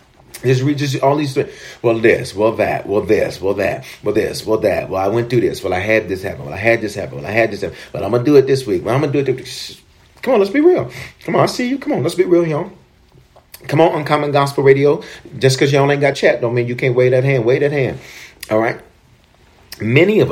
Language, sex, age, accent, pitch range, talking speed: English, male, 40-59, American, 110-150 Hz, 280 wpm